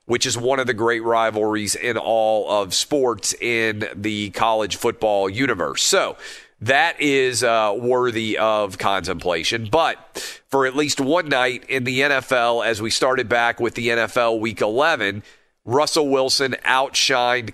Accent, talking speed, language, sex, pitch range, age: American, 150 wpm, English, male, 110-130 Hz, 40-59